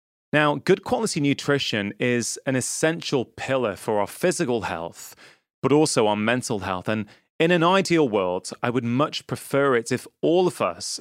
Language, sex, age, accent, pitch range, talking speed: English, male, 30-49, British, 115-155 Hz, 170 wpm